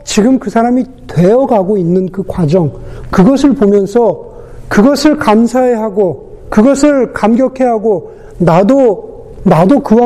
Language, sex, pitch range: Korean, male, 150-230 Hz